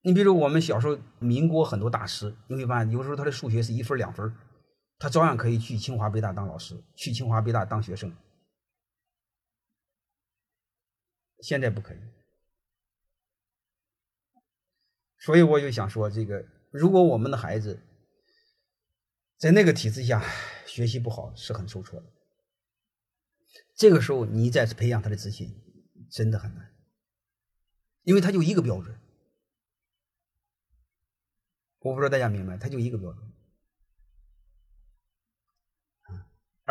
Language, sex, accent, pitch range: Chinese, male, native, 105-150 Hz